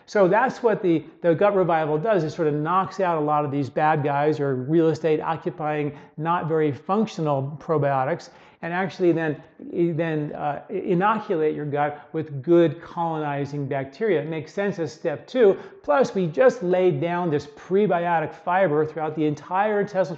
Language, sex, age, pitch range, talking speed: English, male, 40-59, 150-180 Hz, 170 wpm